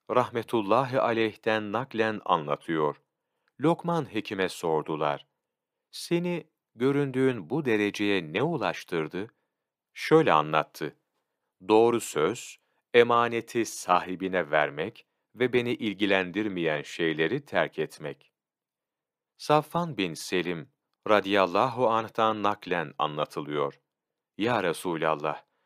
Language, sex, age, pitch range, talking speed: Turkish, male, 40-59, 90-130 Hz, 80 wpm